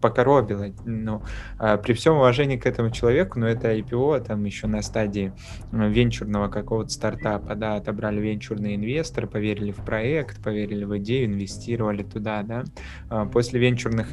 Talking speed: 135 wpm